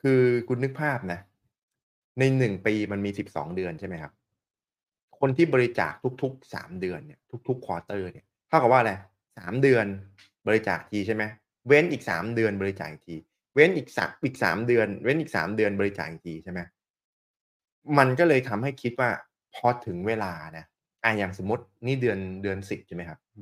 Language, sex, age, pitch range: Thai, male, 20-39, 95-130 Hz